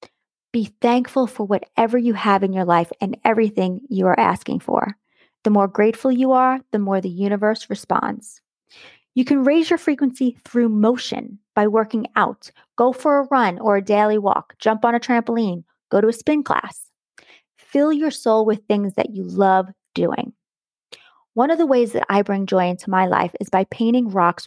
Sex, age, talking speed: female, 30-49, 185 wpm